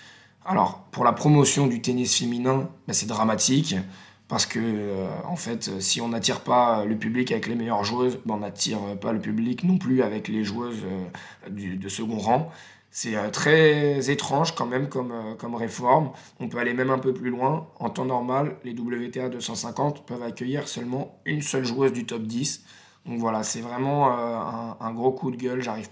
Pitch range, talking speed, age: 115-130 Hz, 200 wpm, 20-39